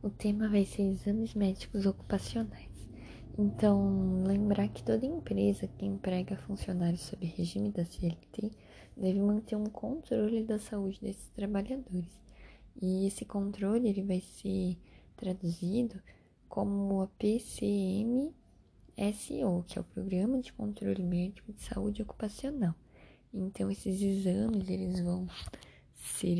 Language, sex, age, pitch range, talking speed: Portuguese, female, 10-29, 185-215 Hz, 115 wpm